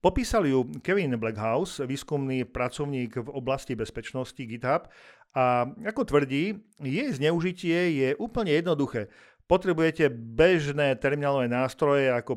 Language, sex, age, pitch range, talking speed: Slovak, male, 50-69, 130-165 Hz, 110 wpm